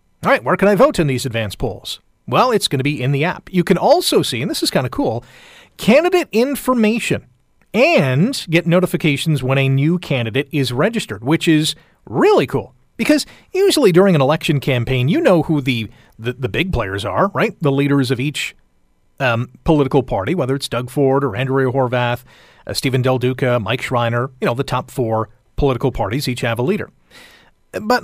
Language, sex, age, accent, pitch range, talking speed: English, male, 40-59, American, 130-185 Hz, 195 wpm